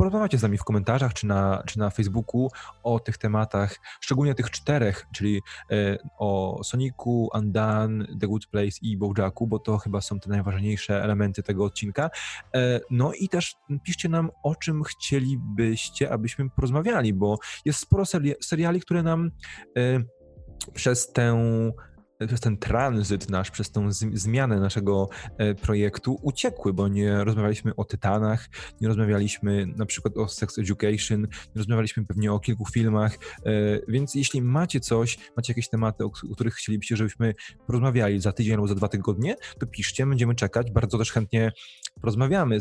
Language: Polish